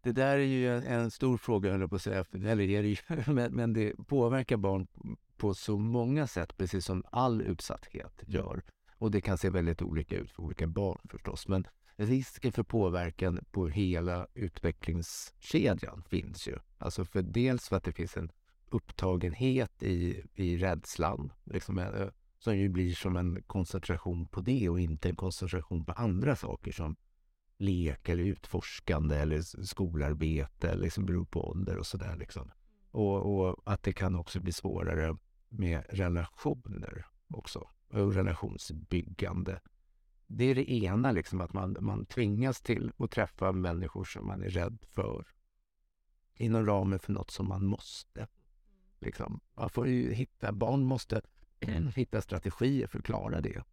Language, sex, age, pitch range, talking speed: Swedish, male, 50-69, 90-110 Hz, 160 wpm